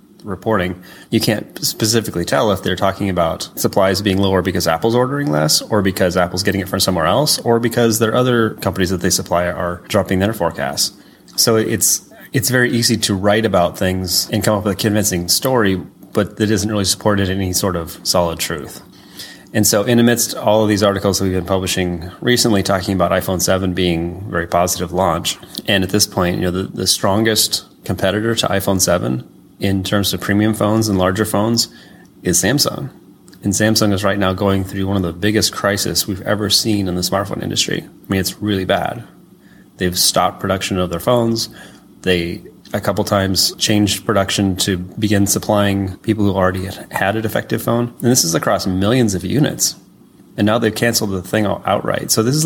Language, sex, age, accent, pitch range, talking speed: English, male, 30-49, American, 95-110 Hz, 195 wpm